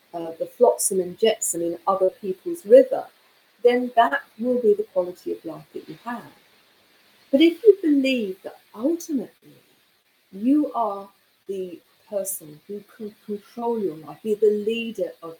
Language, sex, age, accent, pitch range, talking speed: English, female, 40-59, British, 190-260 Hz, 150 wpm